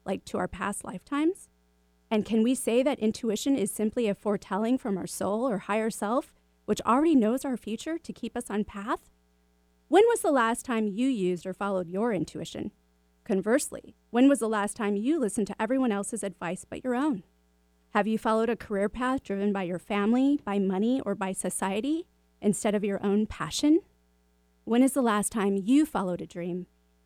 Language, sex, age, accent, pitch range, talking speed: English, female, 30-49, American, 200-280 Hz, 190 wpm